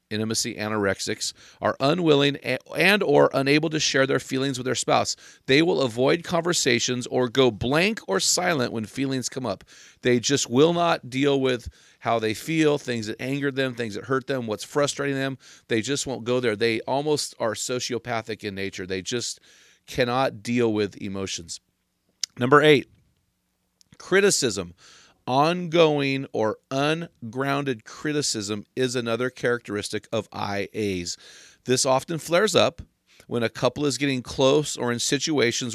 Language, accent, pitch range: English, American, 105-140 Hz